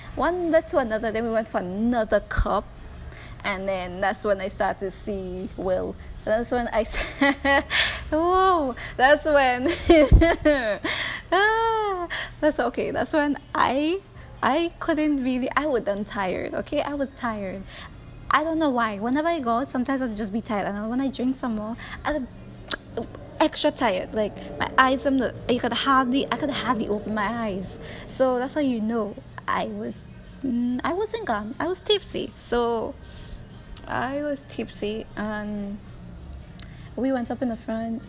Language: English